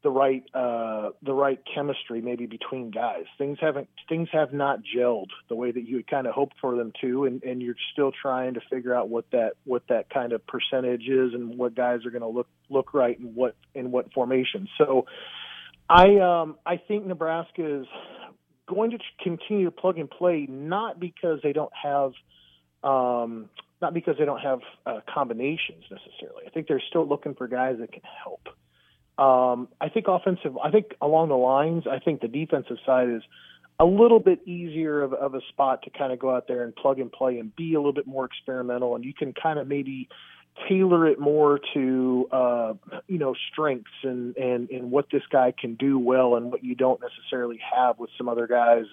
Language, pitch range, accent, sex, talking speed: English, 125-155 Hz, American, male, 205 wpm